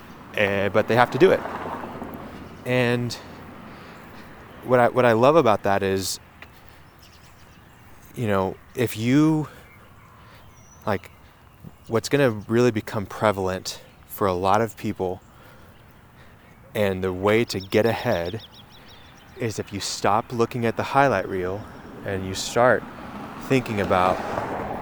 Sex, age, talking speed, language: male, 20-39, 125 wpm, English